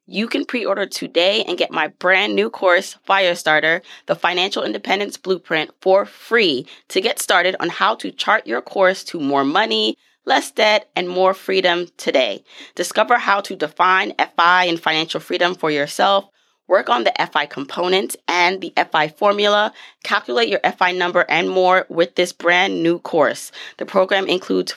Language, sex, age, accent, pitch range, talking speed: English, female, 20-39, American, 160-190 Hz, 165 wpm